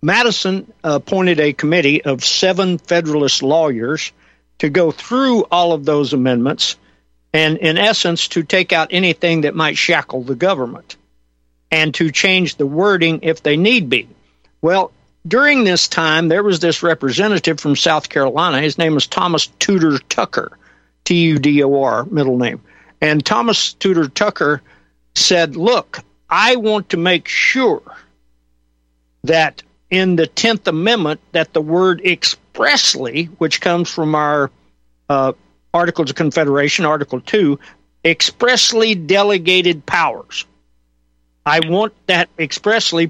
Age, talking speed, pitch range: 60-79, 130 wpm, 140-180 Hz